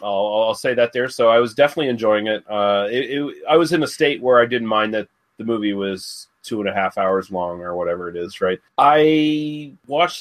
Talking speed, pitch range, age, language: 235 wpm, 105-135 Hz, 30-49, English